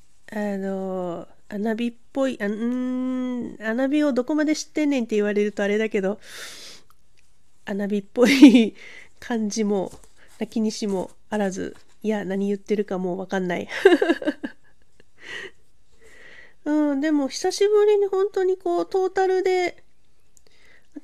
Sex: female